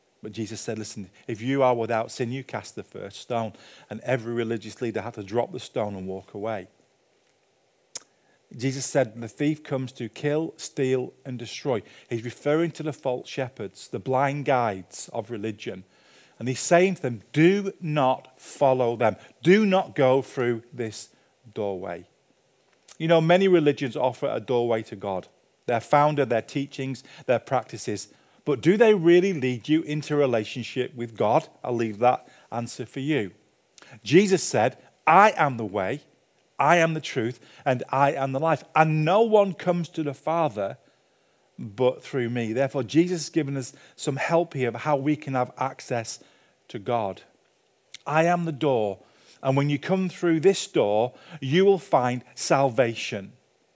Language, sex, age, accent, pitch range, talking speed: English, male, 40-59, British, 115-155 Hz, 170 wpm